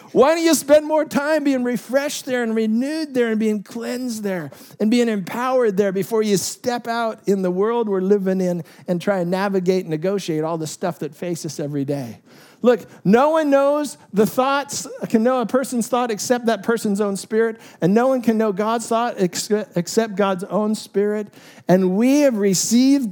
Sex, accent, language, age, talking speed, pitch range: male, American, English, 50-69, 195 wpm, 185-235 Hz